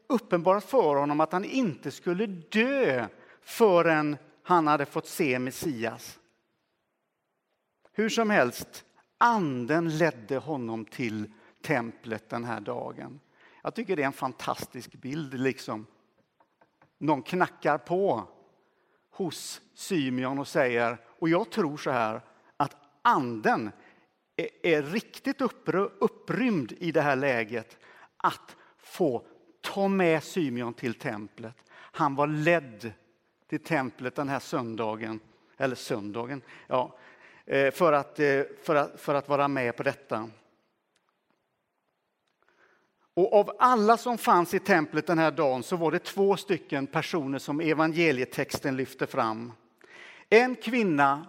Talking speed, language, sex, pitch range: 120 wpm, Swedish, male, 130-185 Hz